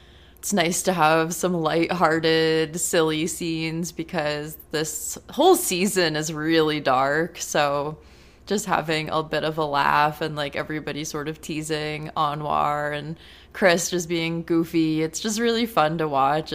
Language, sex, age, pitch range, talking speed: English, female, 20-39, 150-165 Hz, 150 wpm